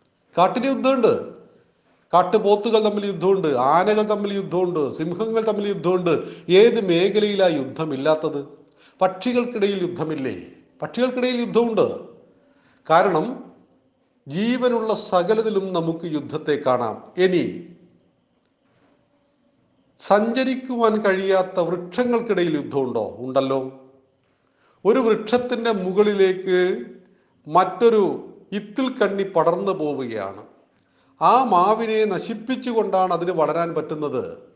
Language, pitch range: Malayalam, 160-215 Hz